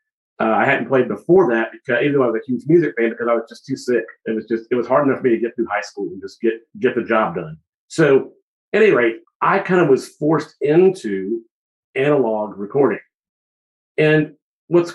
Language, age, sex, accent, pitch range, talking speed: English, 50-69, male, American, 115-160 Hz, 225 wpm